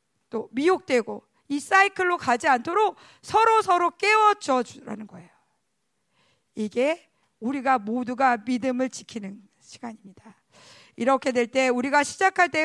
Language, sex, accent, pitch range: Korean, female, native, 245-335 Hz